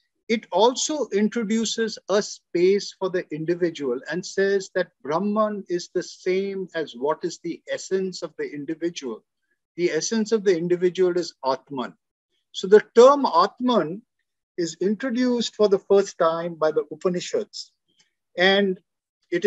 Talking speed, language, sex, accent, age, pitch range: 140 wpm, English, male, Indian, 50-69, 170-220 Hz